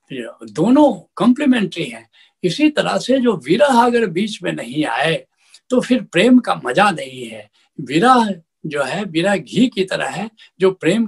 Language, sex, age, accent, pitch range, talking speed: Hindi, male, 70-89, native, 160-225 Hz, 170 wpm